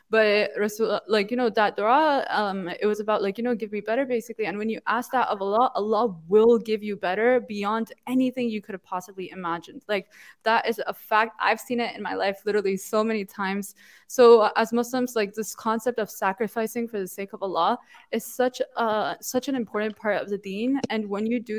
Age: 20-39